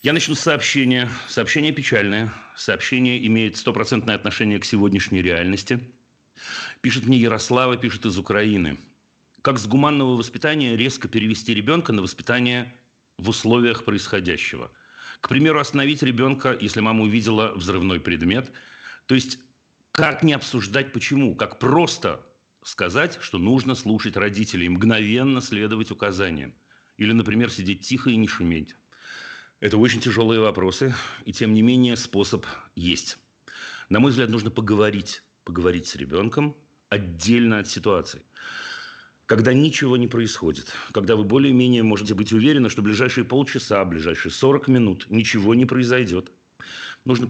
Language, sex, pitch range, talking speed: Russian, male, 110-130 Hz, 135 wpm